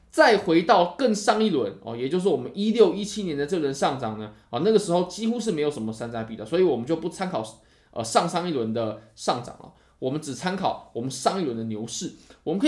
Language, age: Chinese, 20-39